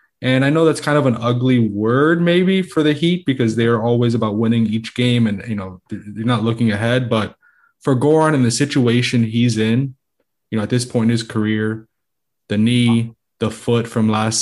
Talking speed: 210 wpm